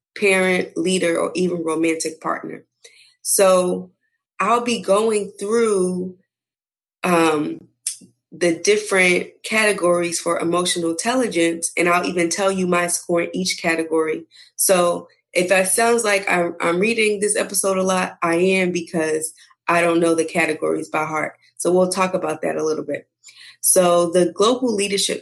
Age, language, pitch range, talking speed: 20-39, English, 165-190 Hz, 150 wpm